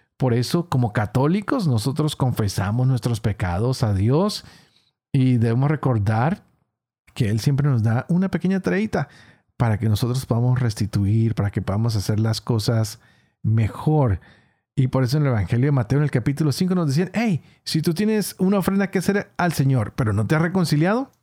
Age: 40-59